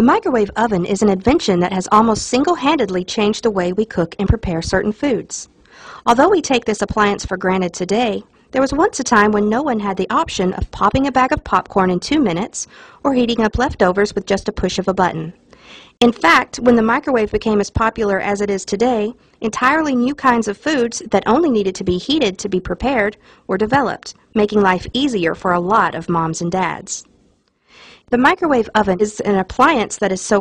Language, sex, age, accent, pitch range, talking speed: English, female, 50-69, American, 190-245 Hz, 205 wpm